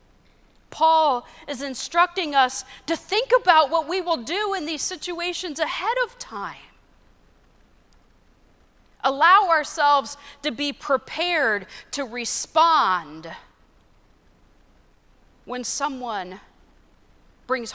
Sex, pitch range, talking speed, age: female, 245-320 Hz, 90 wpm, 40-59